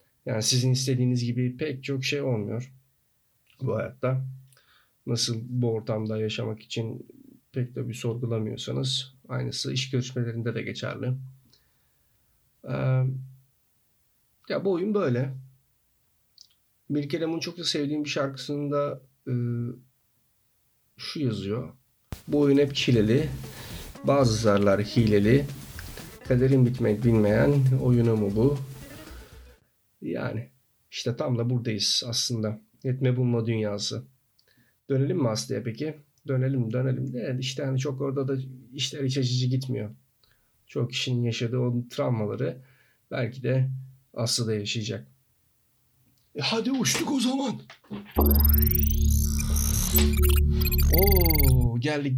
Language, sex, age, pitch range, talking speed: Turkish, male, 50-69, 110-130 Hz, 105 wpm